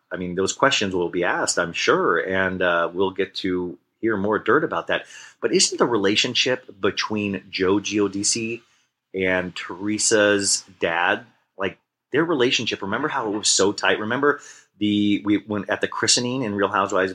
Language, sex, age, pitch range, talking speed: English, male, 30-49, 90-105 Hz, 170 wpm